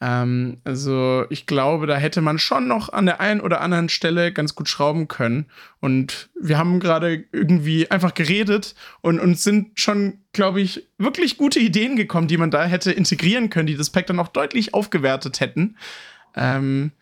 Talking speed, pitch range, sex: 175 wpm, 145-195 Hz, male